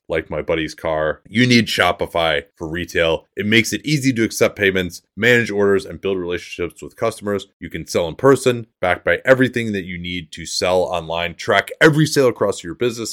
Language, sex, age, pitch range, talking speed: English, male, 30-49, 90-125 Hz, 195 wpm